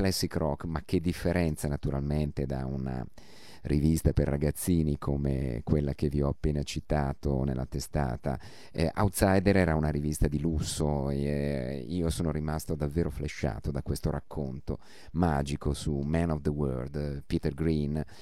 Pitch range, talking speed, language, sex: 70-80 Hz, 150 wpm, Italian, male